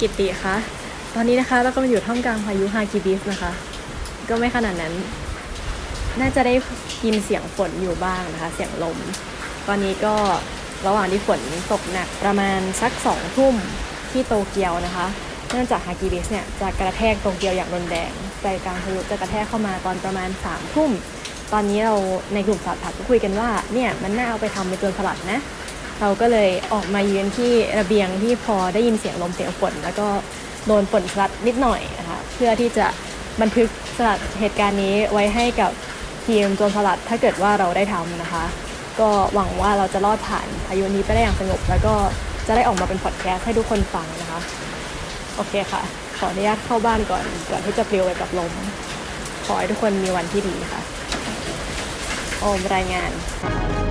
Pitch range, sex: 185-220 Hz, female